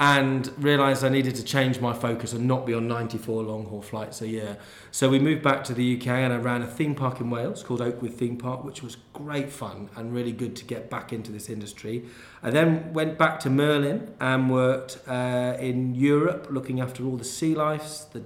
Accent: British